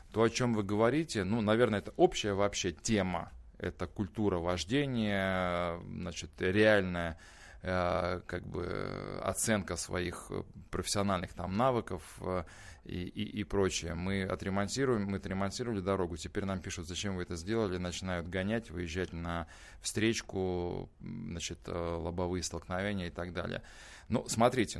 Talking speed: 125 wpm